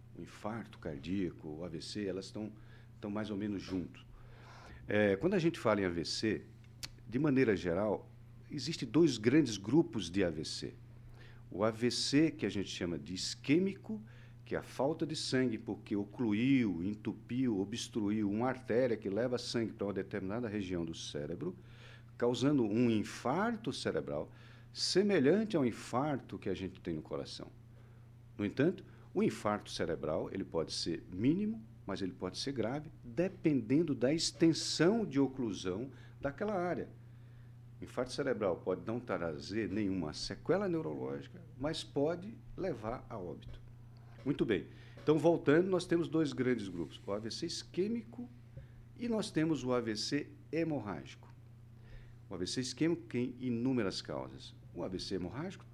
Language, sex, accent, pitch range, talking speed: Portuguese, male, Brazilian, 110-130 Hz, 140 wpm